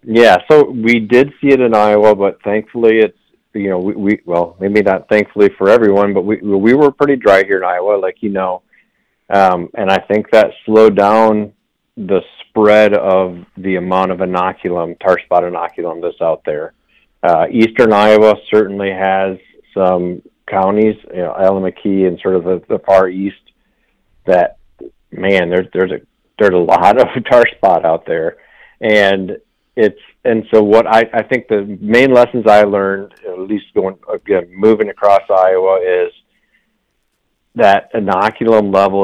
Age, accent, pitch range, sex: 50-69, American, 95-110 Hz, male